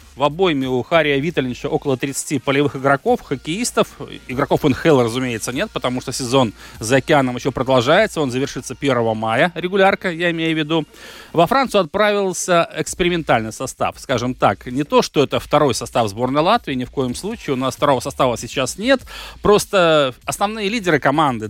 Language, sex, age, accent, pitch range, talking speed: Russian, male, 30-49, native, 130-175 Hz, 165 wpm